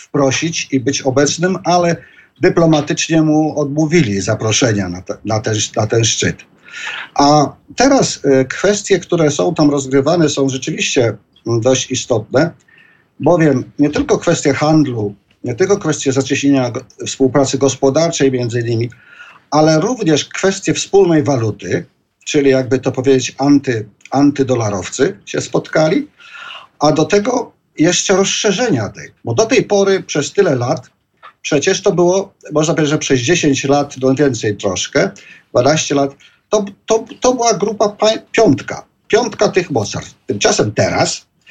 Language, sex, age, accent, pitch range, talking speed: Polish, male, 50-69, native, 130-175 Hz, 130 wpm